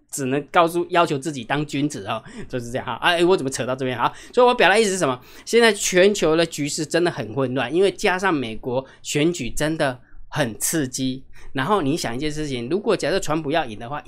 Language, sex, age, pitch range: Chinese, male, 20-39, 135-190 Hz